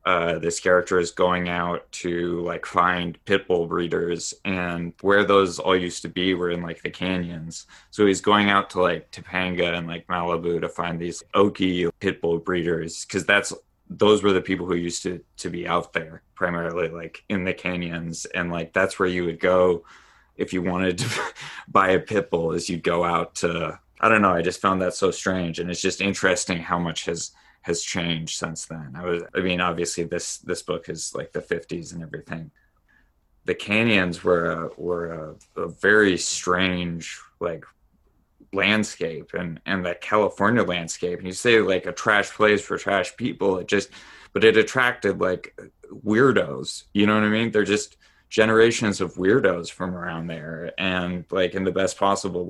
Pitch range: 85-95 Hz